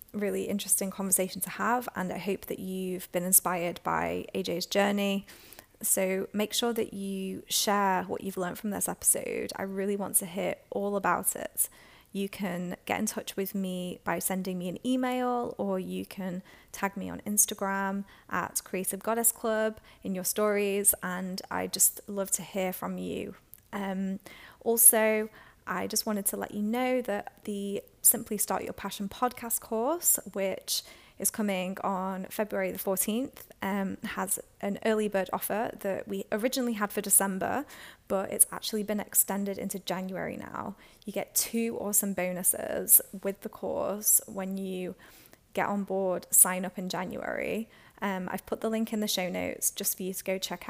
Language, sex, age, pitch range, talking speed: English, female, 20-39, 190-215 Hz, 170 wpm